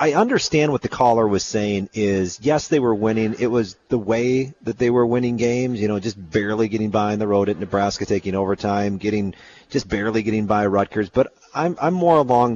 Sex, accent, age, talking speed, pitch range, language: male, American, 40-59, 215 wpm, 100-130 Hz, English